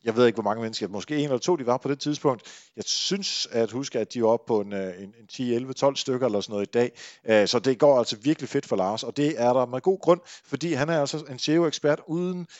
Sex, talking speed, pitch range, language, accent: male, 260 wpm, 110-155 Hz, Danish, native